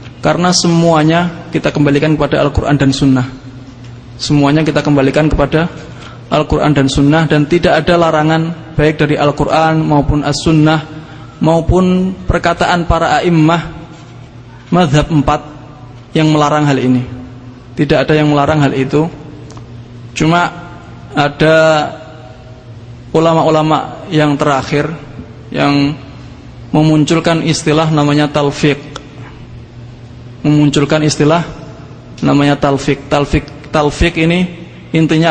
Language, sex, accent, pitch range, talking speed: English, male, Indonesian, 130-160 Hz, 100 wpm